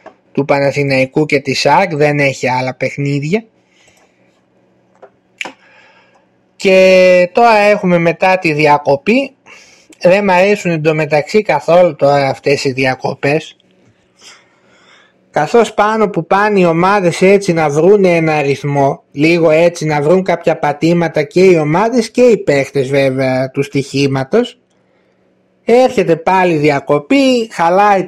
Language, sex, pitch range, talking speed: Greek, male, 145-190 Hz, 115 wpm